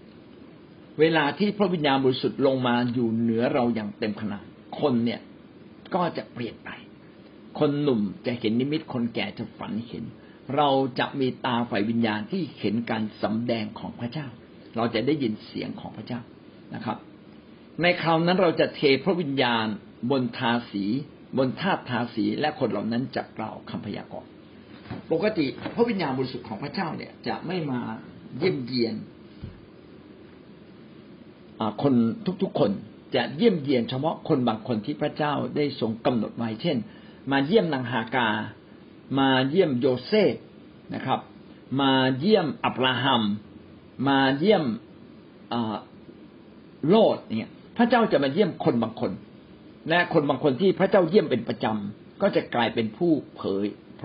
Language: Thai